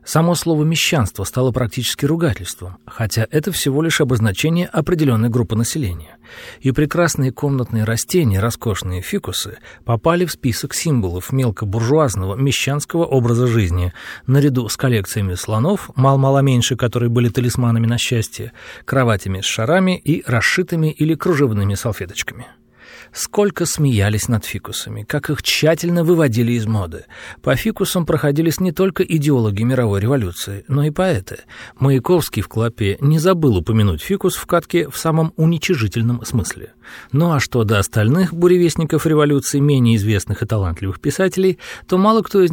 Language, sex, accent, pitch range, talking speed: Russian, male, native, 110-160 Hz, 135 wpm